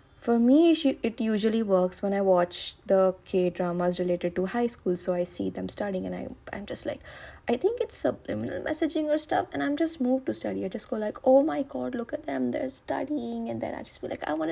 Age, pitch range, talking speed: 20-39, 190-270 Hz, 240 wpm